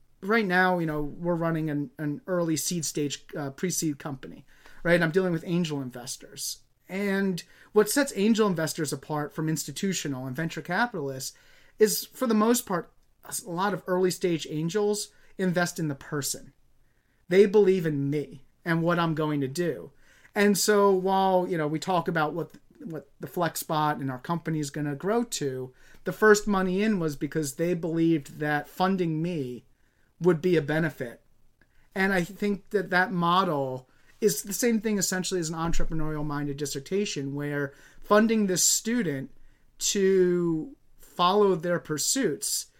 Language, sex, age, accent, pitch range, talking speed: English, male, 30-49, American, 150-190 Hz, 165 wpm